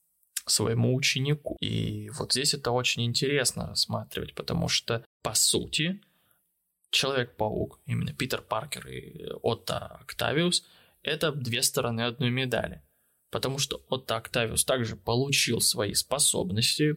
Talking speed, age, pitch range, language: 115 wpm, 20-39, 115-140 Hz, Russian